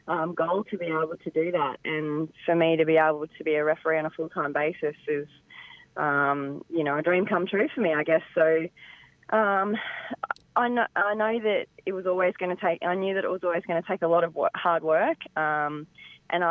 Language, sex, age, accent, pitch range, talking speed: English, female, 20-39, Australian, 155-180 Hz, 225 wpm